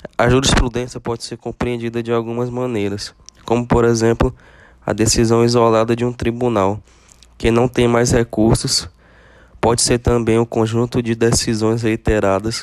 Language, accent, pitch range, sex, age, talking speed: Portuguese, Brazilian, 110-120 Hz, male, 20-39, 145 wpm